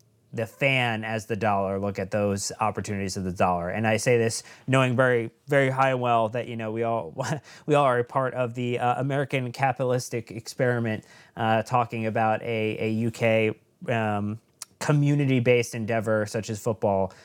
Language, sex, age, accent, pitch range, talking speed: English, male, 30-49, American, 105-120 Hz, 175 wpm